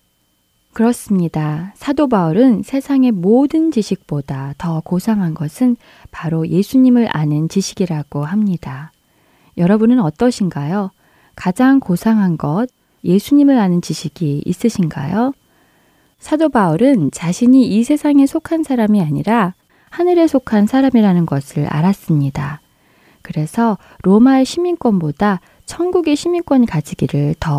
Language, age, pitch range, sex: Korean, 20-39, 160-240 Hz, female